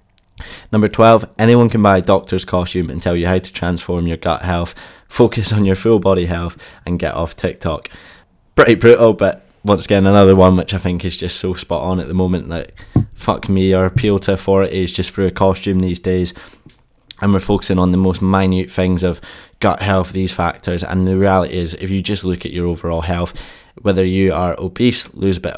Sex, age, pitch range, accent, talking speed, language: male, 20-39, 85-95 Hz, British, 210 wpm, English